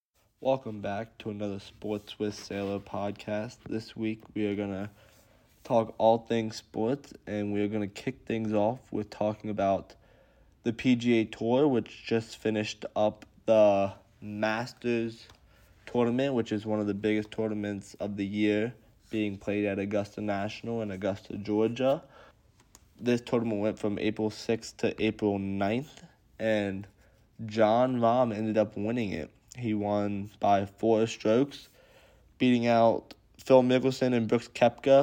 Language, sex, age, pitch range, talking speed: English, male, 20-39, 105-115 Hz, 145 wpm